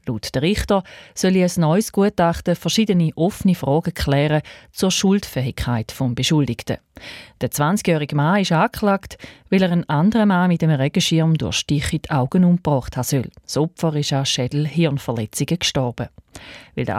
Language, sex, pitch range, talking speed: German, female, 135-185 Hz, 150 wpm